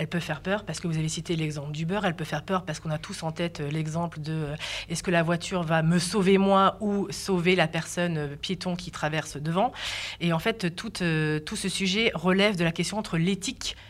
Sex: female